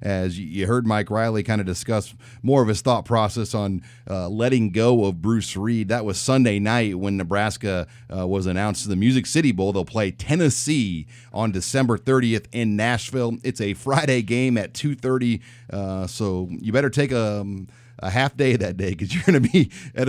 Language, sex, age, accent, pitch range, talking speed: English, male, 30-49, American, 100-120 Hz, 190 wpm